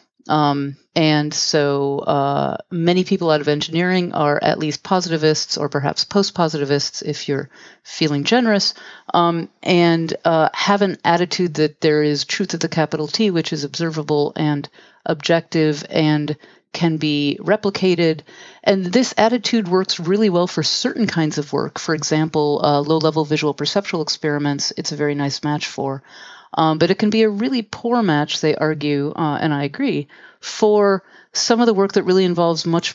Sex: female